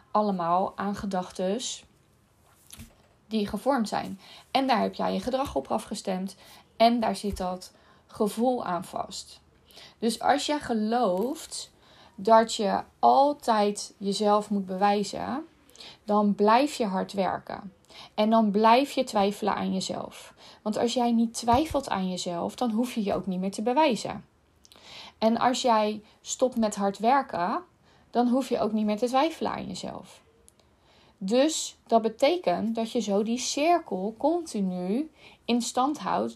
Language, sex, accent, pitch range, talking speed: Dutch, female, Dutch, 195-235 Hz, 145 wpm